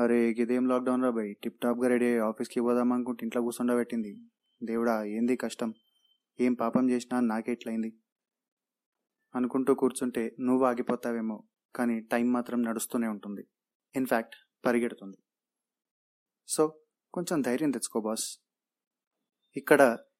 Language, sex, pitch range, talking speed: Telugu, male, 120-140 Hz, 100 wpm